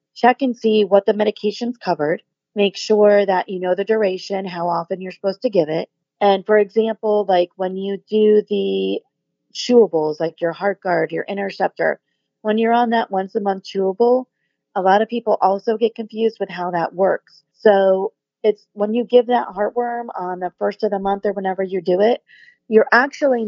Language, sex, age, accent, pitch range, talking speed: English, female, 40-59, American, 180-215 Hz, 190 wpm